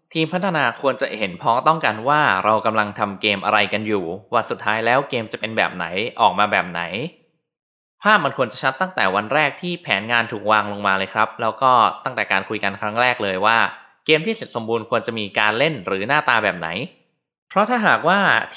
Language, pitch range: Thai, 100-130 Hz